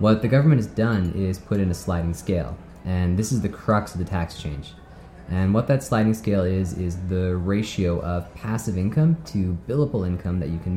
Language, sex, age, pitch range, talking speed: English, male, 20-39, 85-110 Hz, 210 wpm